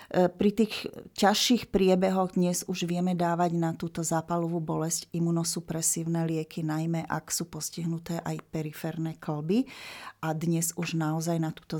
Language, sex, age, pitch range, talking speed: Slovak, female, 40-59, 160-175 Hz, 135 wpm